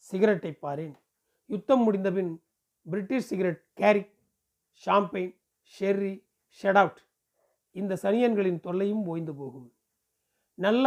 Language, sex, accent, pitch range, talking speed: Tamil, male, native, 155-200 Hz, 95 wpm